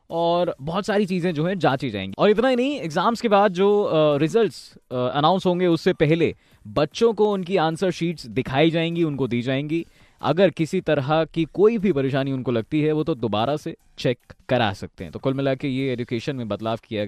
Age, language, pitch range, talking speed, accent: 20-39, Hindi, 115-160 Hz, 205 wpm, native